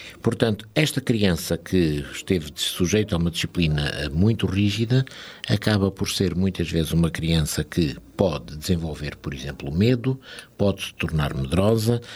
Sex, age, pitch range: male, 60-79, 85-110 Hz